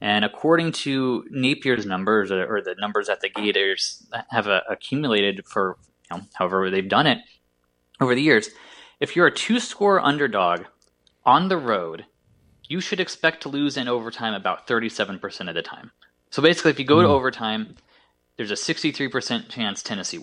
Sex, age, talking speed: male, 20-39, 155 wpm